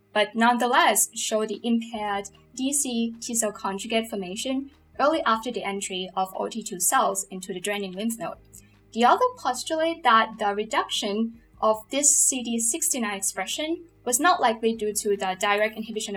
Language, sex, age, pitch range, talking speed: English, female, 10-29, 195-235 Hz, 150 wpm